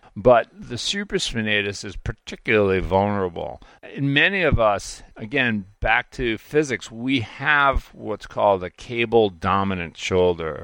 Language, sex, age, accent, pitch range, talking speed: English, male, 50-69, American, 95-120 Hz, 120 wpm